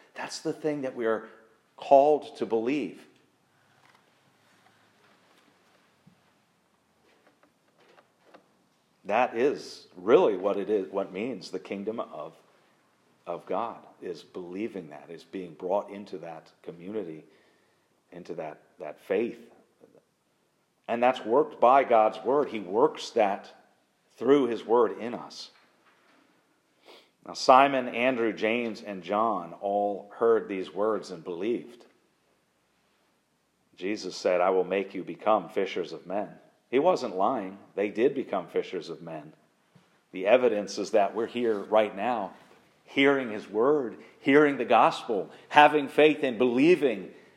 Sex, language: male, English